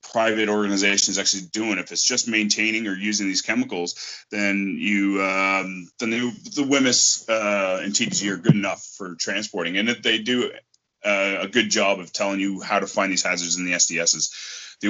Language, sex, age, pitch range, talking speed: English, male, 20-39, 85-105 Hz, 195 wpm